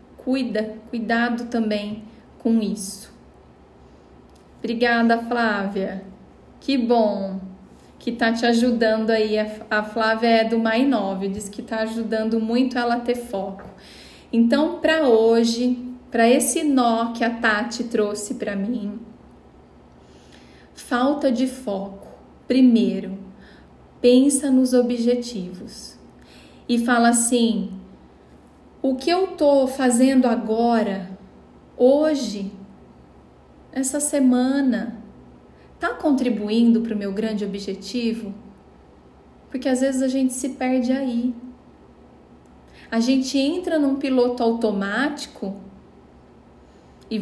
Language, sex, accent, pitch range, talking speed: Portuguese, female, Brazilian, 220-255 Hz, 105 wpm